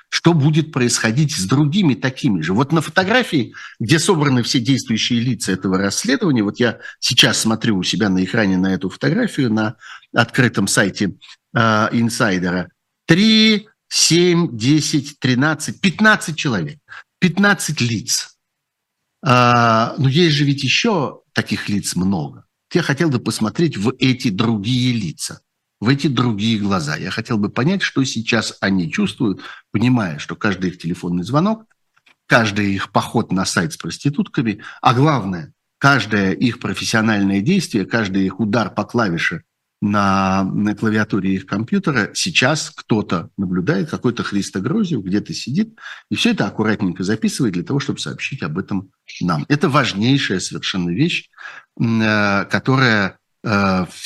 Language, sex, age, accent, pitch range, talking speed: Russian, male, 50-69, native, 100-150 Hz, 140 wpm